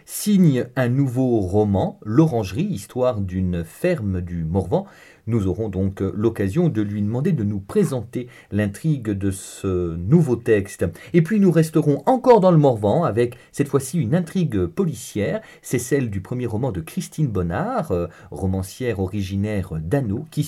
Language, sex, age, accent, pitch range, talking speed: French, male, 40-59, French, 100-155 Hz, 150 wpm